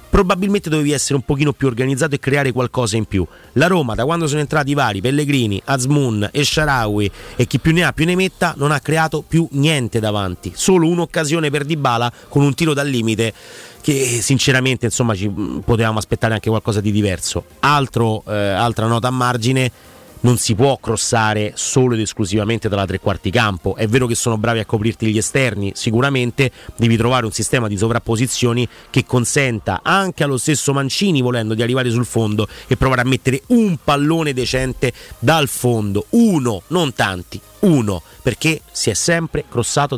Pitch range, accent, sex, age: 110-140 Hz, native, male, 30-49